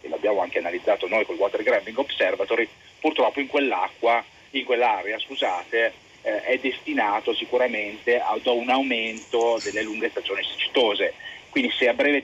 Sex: male